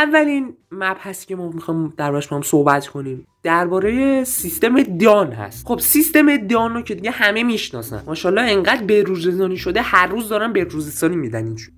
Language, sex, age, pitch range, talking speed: Persian, male, 20-39, 160-235 Hz, 155 wpm